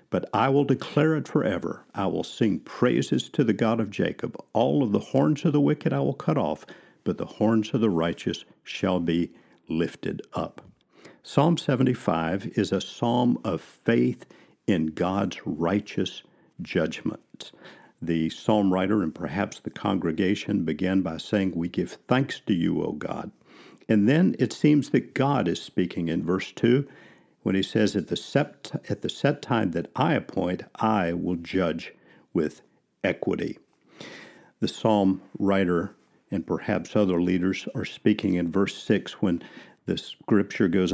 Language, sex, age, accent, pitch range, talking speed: English, male, 50-69, American, 90-110 Hz, 155 wpm